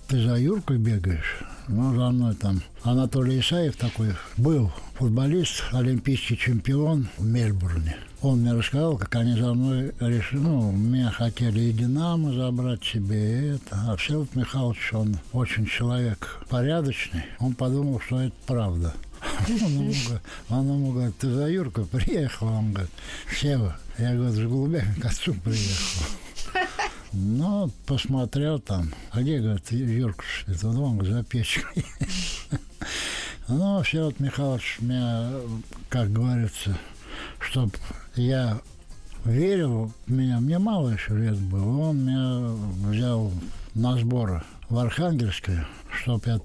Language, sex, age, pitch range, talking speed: Russian, male, 60-79, 105-135 Hz, 125 wpm